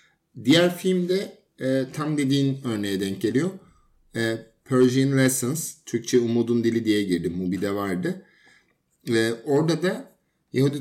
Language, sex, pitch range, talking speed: Turkish, male, 120-145 Hz, 120 wpm